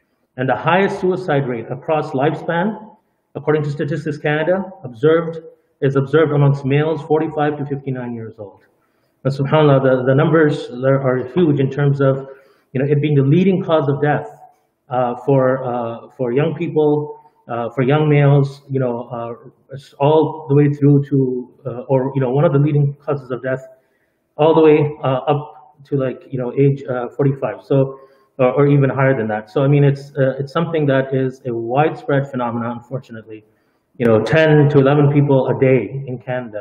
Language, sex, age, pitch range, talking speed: English, male, 30-49, 130-150 Hz, 180 wpm